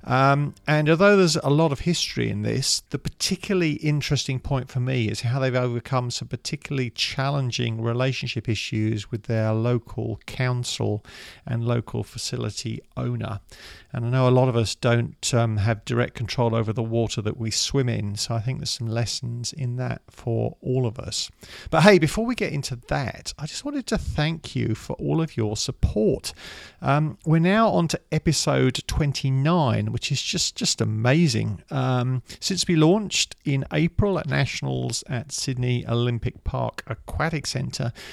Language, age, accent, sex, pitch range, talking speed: English, 40-59, British, male, 115-150 Hz, 170 wpm